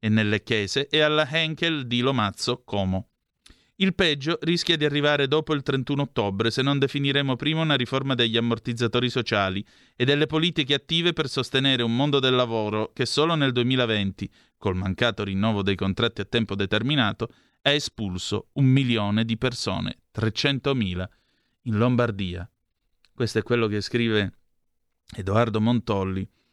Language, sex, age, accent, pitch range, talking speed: Italian, male, 30-49, native, 100-140 Hz, 145 wpm